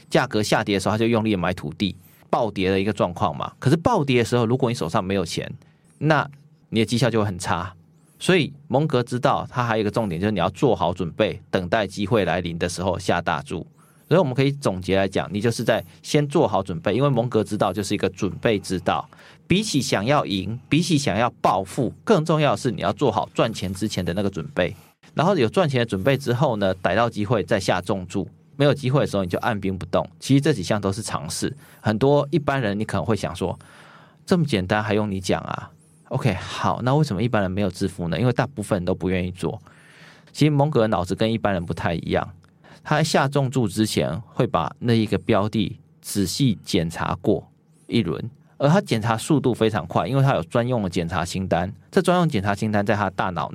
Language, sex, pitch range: Chinese, male, 100-145 Hz